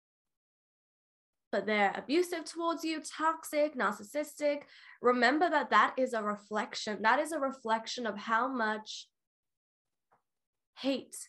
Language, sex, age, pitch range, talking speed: English, female, 10-29, 225-290 Hz, 110 wpm